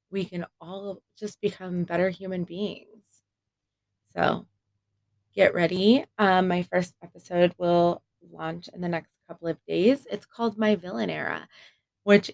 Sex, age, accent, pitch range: female, 20-39, American, 135-205 Hz